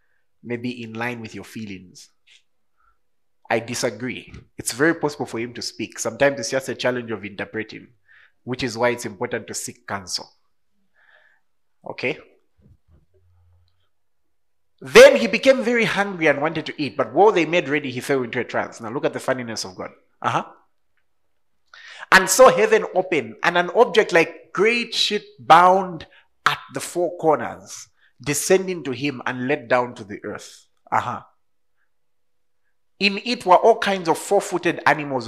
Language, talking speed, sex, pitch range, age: English, 155 wpm, male, 120-180 Hz, 30-49